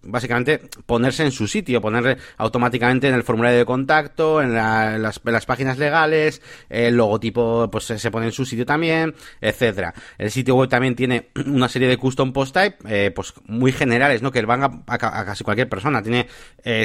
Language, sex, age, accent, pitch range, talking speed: Spanish, male, 30-49, Spanish, 115-150 Hz, 190 wpm